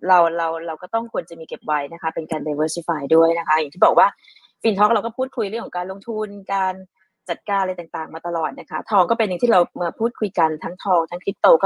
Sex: female